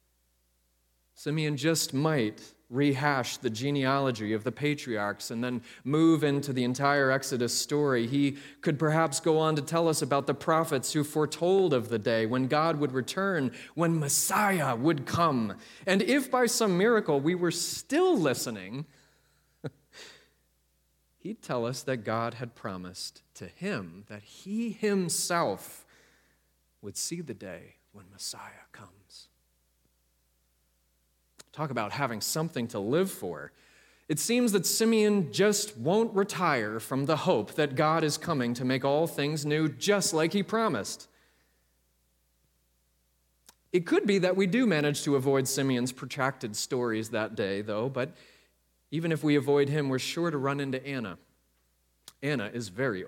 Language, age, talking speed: English, 30-49, 145 wpm